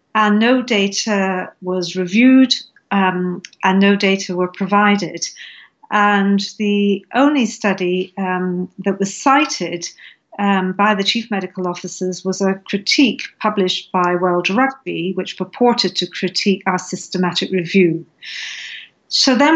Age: 50-69